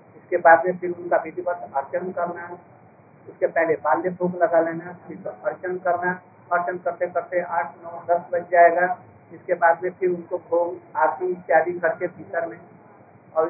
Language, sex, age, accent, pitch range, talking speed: Hindi, male, 60-79, native, 170-190 Hz, 160 wpm